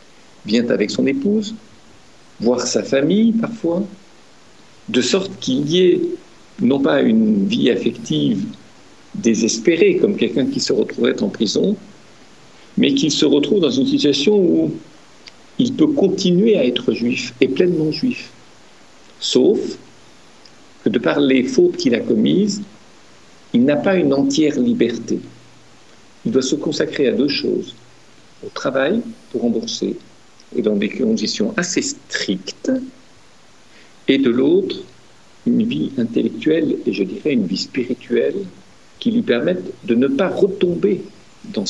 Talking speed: 135 wpm